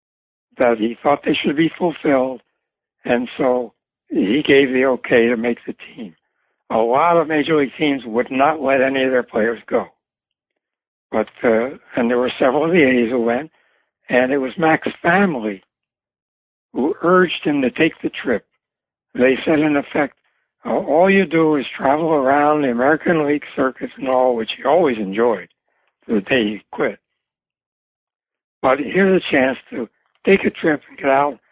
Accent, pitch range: American, 125-160 Hz